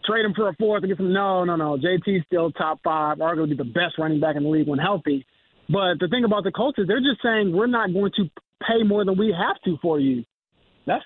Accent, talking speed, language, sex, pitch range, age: American, 260 wpm, English, male, 170-205 Hz, 30-49